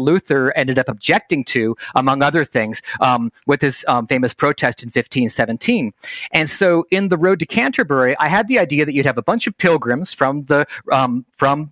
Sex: male